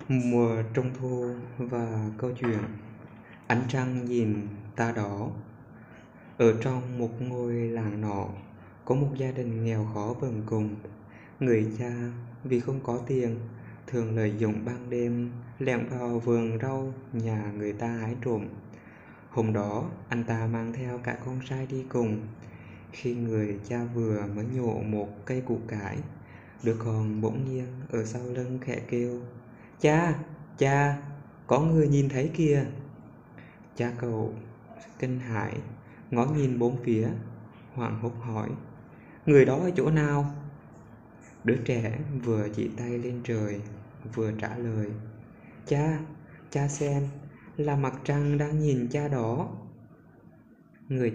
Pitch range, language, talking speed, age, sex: 110-130 Hz, Vietnamese, 140 wpm, 20-39, male